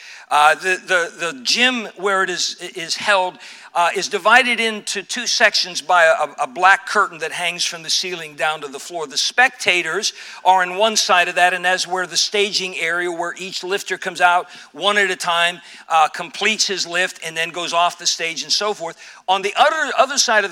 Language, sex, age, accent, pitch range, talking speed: English, male, 50-69, American, 180-225 Hz, 210 wpm